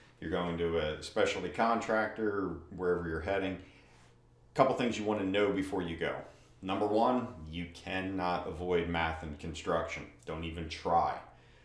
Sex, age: male, 40-59